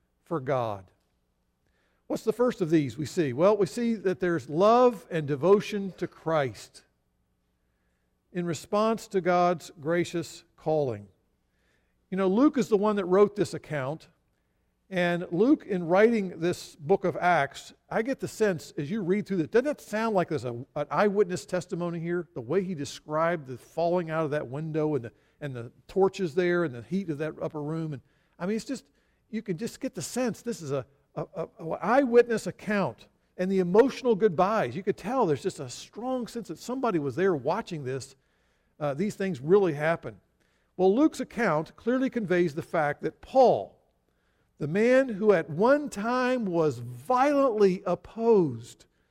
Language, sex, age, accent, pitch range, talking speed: English, male, 50-69, American, 150-220 Hz, 175 wpm